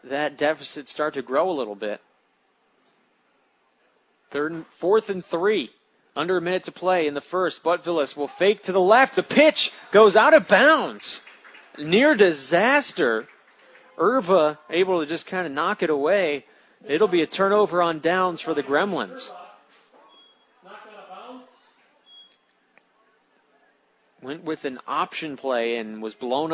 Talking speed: 140 wpm